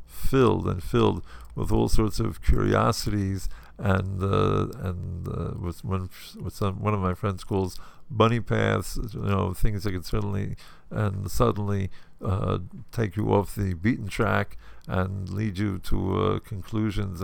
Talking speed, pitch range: 155 wpm, 90-110 Hz